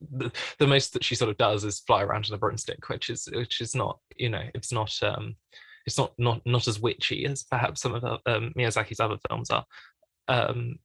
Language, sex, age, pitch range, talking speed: English, male, 20-39, 115-140 Hz, 225 wpm